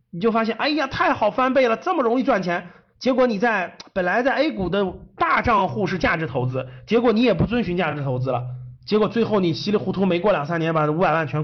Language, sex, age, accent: Chinese, male, 30-49, native